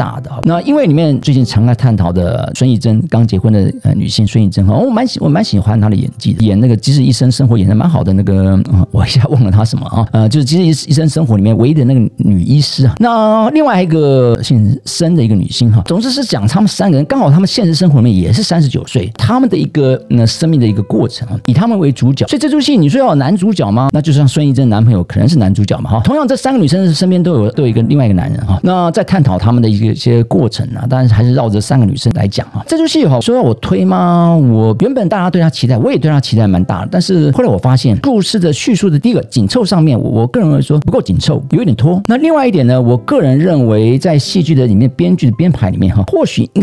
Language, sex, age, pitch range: Chinese, male, 50-69, 115-175 Hz